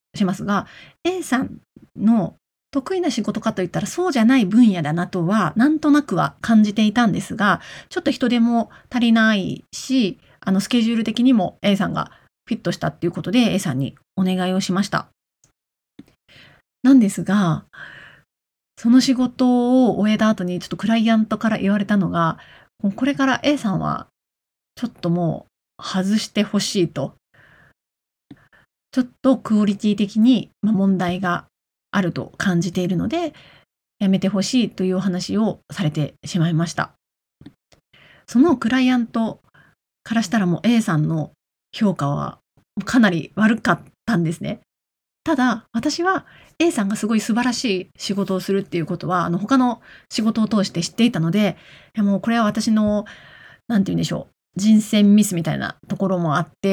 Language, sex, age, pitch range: Japanese, female, 30-49, 180-230 Hz